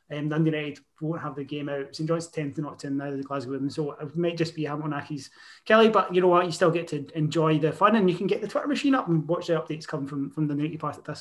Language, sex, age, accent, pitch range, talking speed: English, male, 20-39, British, 160-190 Hz, 300 wpm